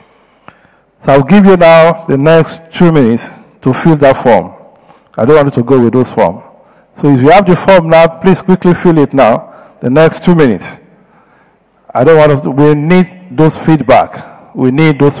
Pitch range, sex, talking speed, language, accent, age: 145-190 Hz, male, 195 wpm, English, Nigerian, 50-69